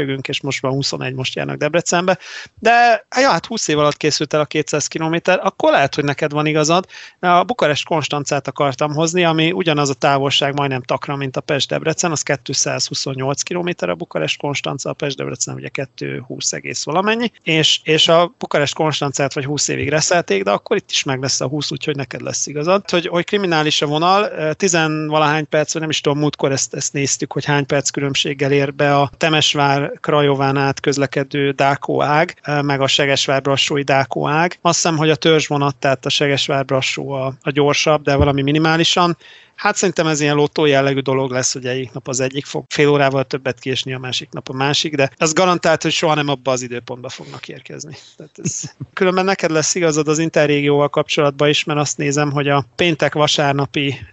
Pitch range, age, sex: 140-160 Hz, 30-49, male